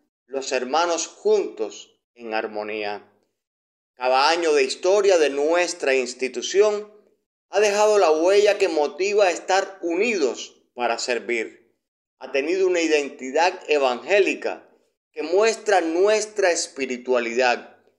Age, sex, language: 30-49, male, Spanish